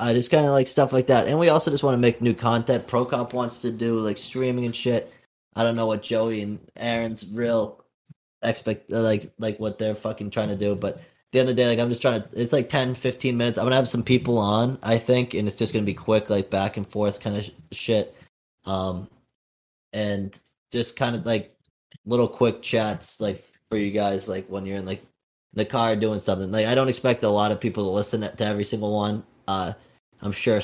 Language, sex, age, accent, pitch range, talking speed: English, male, 20-39, American, 95-120 Hz, 240 wpm